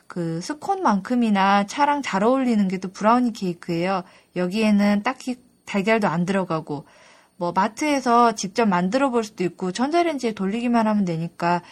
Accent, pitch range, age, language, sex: native, 185-260 Hz, 20-39, Korean, female